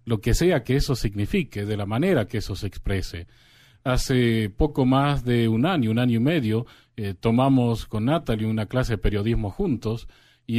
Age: 40-59